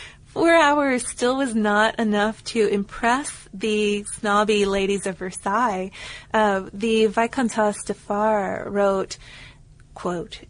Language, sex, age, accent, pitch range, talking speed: English, female, 20-39, American, 195-225 Hz, 115 wpm